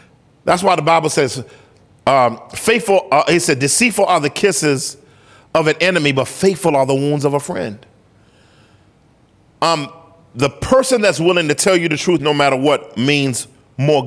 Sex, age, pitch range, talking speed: male, 40-59, 120-165 Hz, 170 wpm